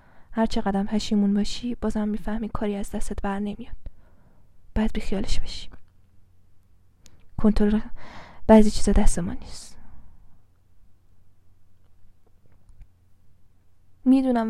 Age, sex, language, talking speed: 10-29, female, Persian, 85 wpm